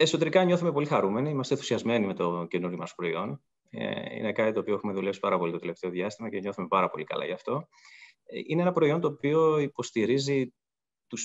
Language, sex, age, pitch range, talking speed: Greek, male, 20-39, 95-145 Hz, 190 wpm